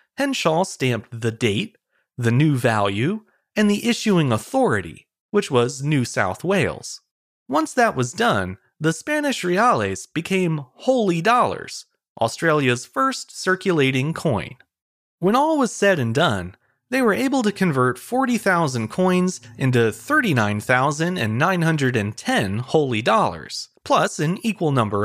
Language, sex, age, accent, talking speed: English, male, 30-49, American, 120 wpm